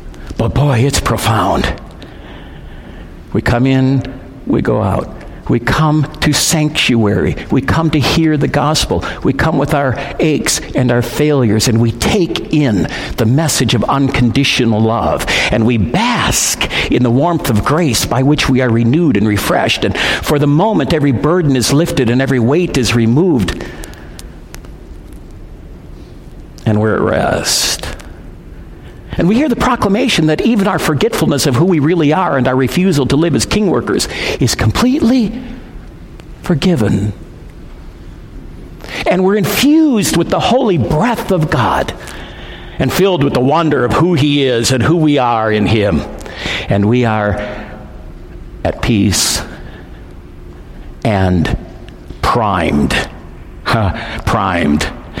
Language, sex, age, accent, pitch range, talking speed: English, male, 60-79, American, 95-155 Hz, 135 wpm